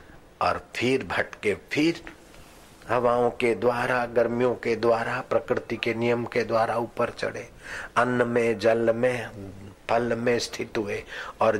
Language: Hindi